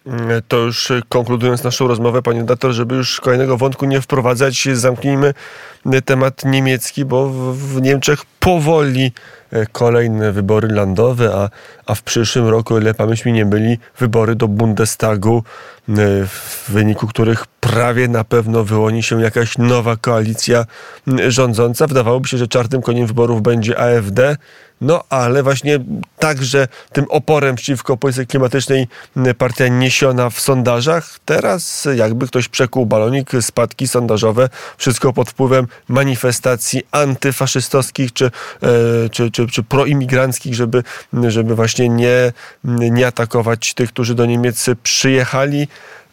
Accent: native